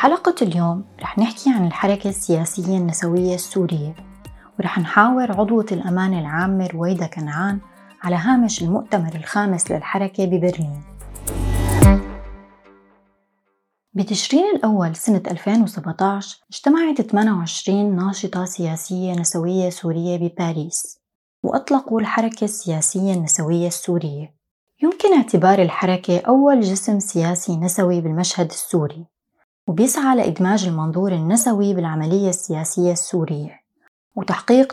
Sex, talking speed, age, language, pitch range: female, 95 wpm, 20-39, Arabic, 170-210 Hz